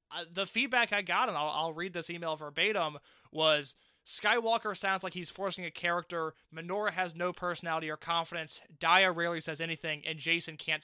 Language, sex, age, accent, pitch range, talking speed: English, male, 20-39, American, 165-225 Hz, 175 wpm